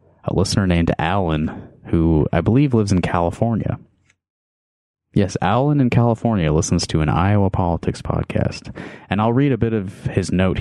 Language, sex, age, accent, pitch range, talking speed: English, male, 30-49, American, 90-115 Hz, 160 wpm